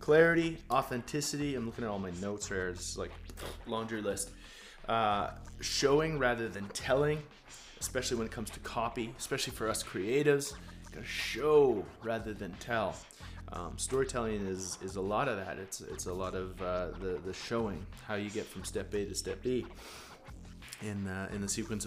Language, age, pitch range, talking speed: English, 20-39, 95-125 Hz, 175 wpm